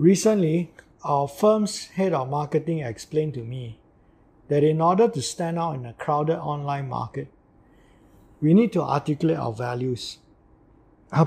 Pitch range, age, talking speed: 135-175 Hz, 50-69, 145 wpm